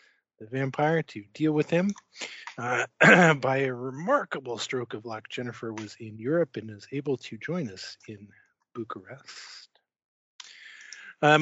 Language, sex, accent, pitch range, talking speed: English, male, American, 135-170 Hz, 135 wpm